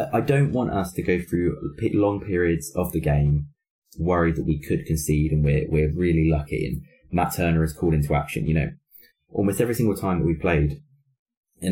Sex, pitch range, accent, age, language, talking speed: male, 75-95 Hz, British, 20-39, English, 200 wpm